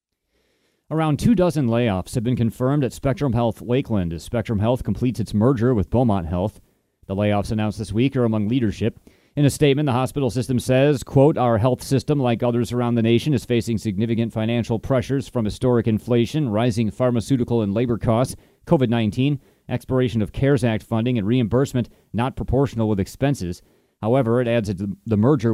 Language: English